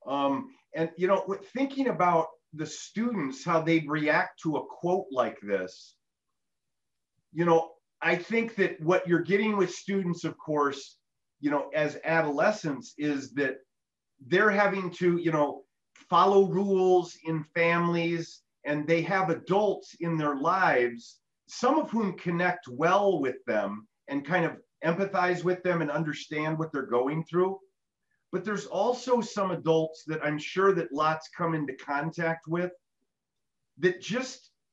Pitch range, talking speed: 150-185 Hz, 150 wpm